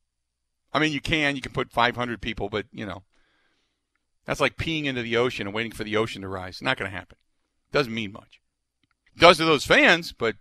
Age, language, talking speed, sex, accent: 50-69, English, 215 wpm, male, American